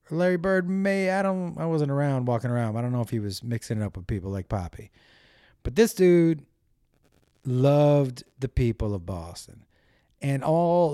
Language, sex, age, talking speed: English, male, 30-49, 180 wpm